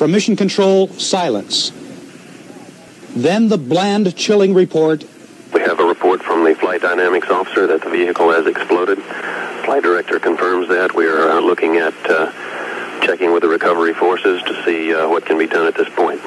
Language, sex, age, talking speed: Finnish, male, 60-79, 70 wpm